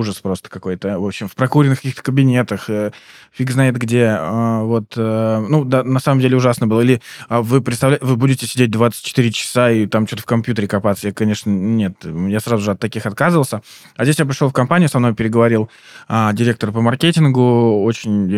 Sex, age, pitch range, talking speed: male, 20-39, 110-130 Hz, 200 wpm